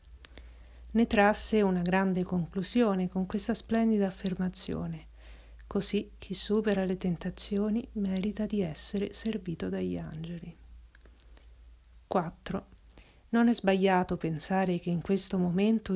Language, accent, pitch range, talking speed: Italian, native, 175-210 Hz, 110 wpm